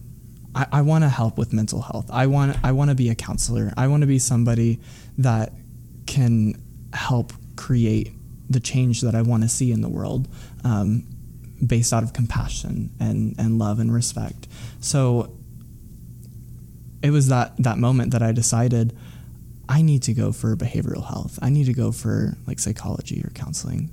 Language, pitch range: English, 115-125 Hz